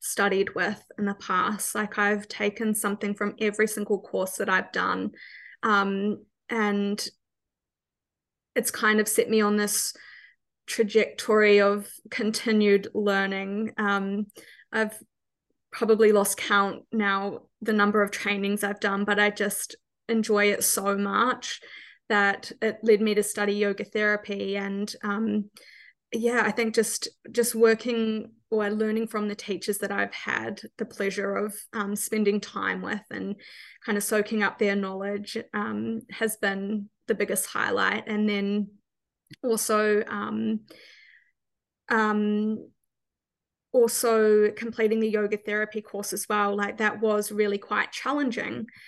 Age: 20-39